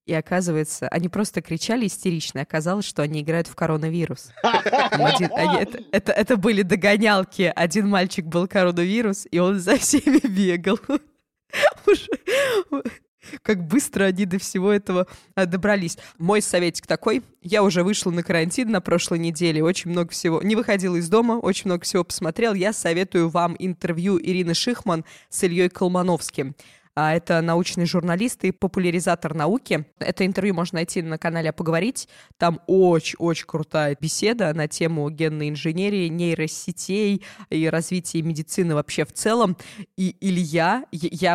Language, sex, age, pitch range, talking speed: Russian, female, 20-39, 160-195 Hz, 145 wpm